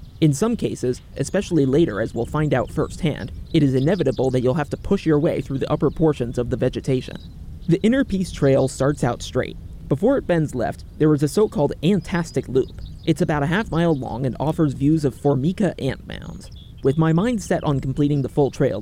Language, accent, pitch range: English, American, 130-170 Hz